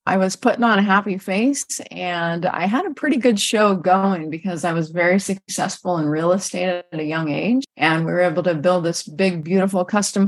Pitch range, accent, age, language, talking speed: 180-220 Hz, American, 30-49, English, 215 wpm